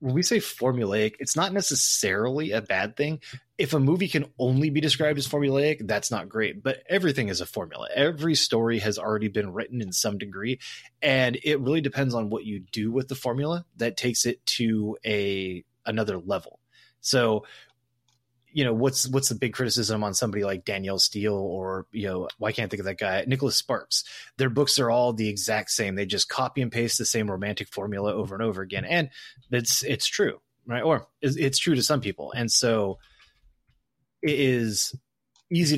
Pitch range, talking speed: 110-140 Hz, 195 wpm